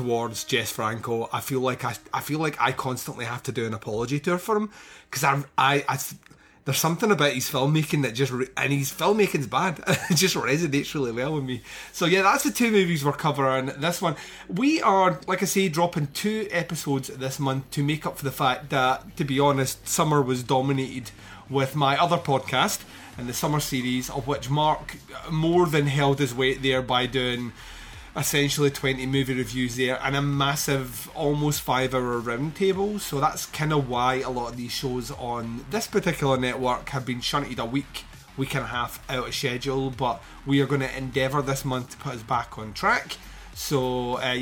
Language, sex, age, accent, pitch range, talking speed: English, male, 30-49, British, 130-155 Hz, 205 wpm